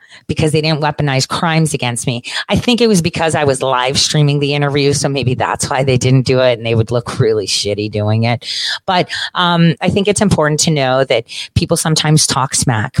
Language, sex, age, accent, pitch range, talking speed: English, female, 30-49, American, 125-160 Hz, 215 wpm